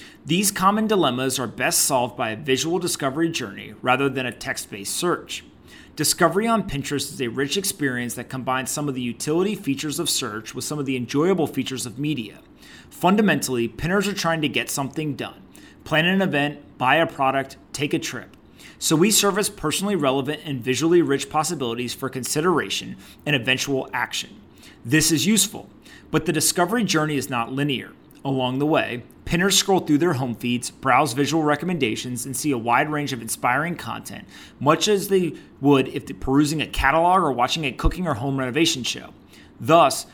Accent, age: American, 30-49